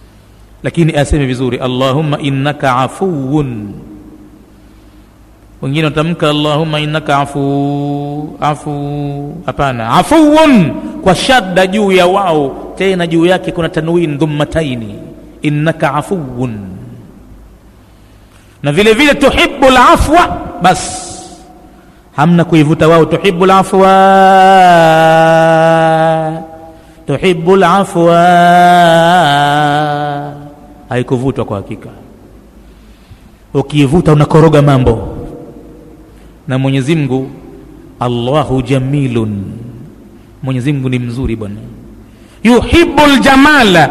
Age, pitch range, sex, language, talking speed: 50-69, 135-180 Hz, male, Swahili, 75 wpm